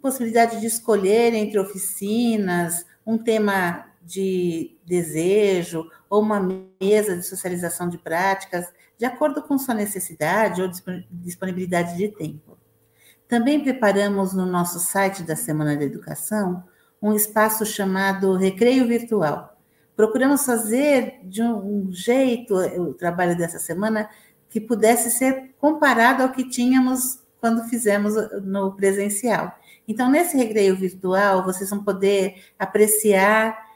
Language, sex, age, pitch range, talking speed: Portuguese, female, 50-69, 185-225 Hz, 120 wpm